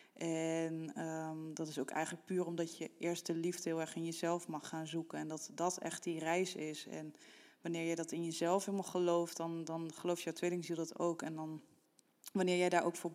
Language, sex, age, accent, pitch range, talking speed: Dutch, female, 20-39, Dutch, 165-180 Hz, 210 wpm